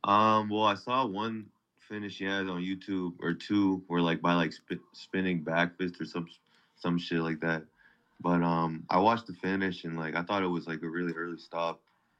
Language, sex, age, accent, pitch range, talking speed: English, male, 20-39, American, 85-95 Hz, 215 wpm